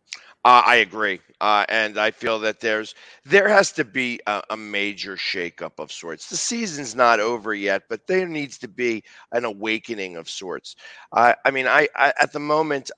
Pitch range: 105-125 Hz